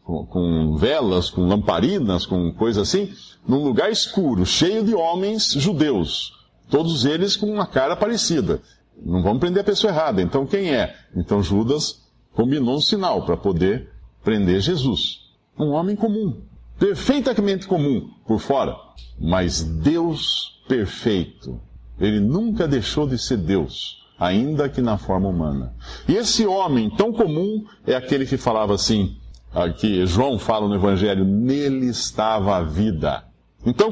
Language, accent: Portuguese, Brazilian